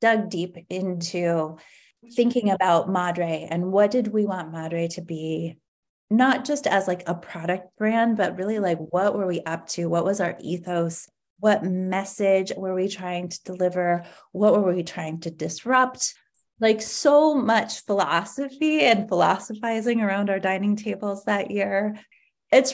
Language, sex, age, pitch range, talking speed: English, female, 30-49, 180-225 Hz, 155 wpm